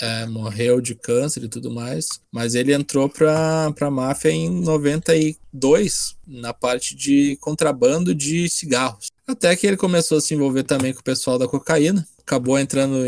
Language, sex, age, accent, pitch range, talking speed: Portuguese, male, 20-39, Brazilian, 120-150 Hz, 160 wpm